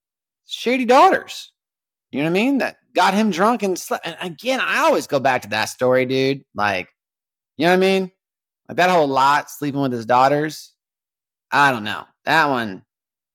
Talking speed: 190 wpm